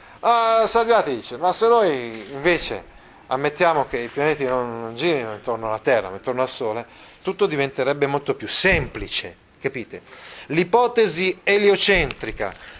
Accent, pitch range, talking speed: native, 130-190 Hz, 135 wpm